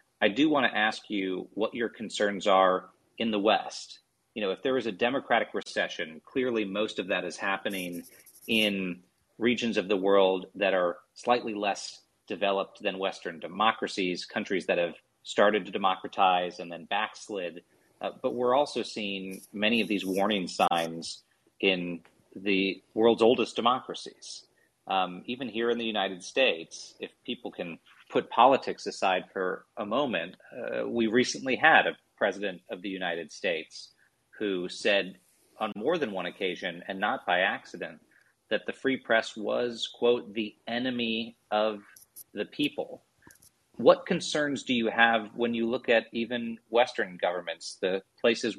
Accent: American